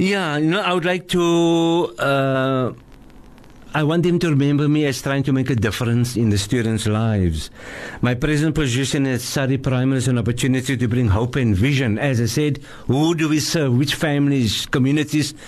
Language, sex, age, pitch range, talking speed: English, male, 60-79, 130-165 Hz, 185 wpm